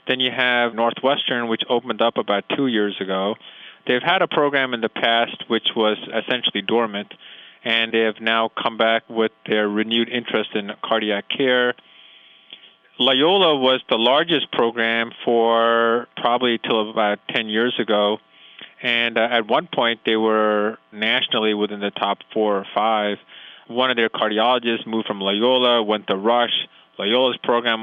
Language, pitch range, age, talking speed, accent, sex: English, 110-120 Hz, 20-39, 155 wpm, American, male